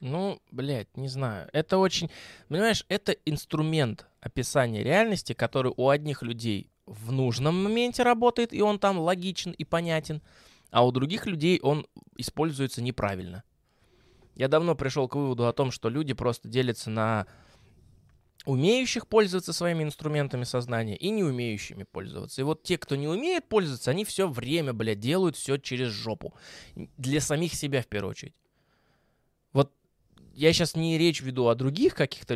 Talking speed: 150 wpm